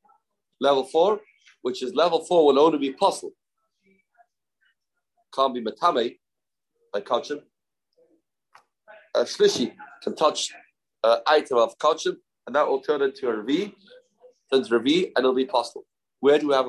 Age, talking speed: 30-49, 140 wpm